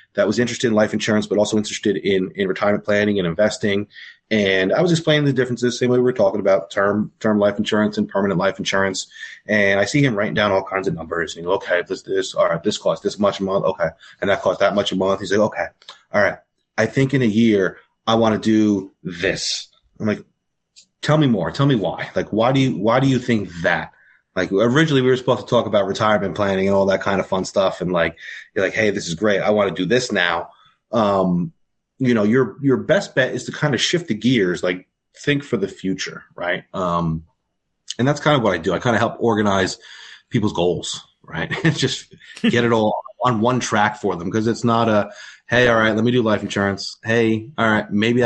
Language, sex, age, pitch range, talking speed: English, male, 30-49, 100-125 Hz, 235 wpm